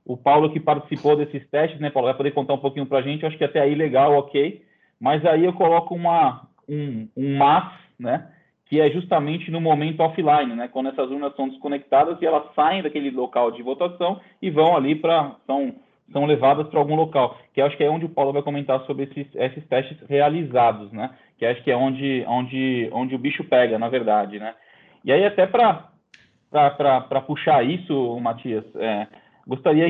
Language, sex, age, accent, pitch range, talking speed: Portuguese, male, 20-39, Brazilian, 140-165 Hz, 195 wpm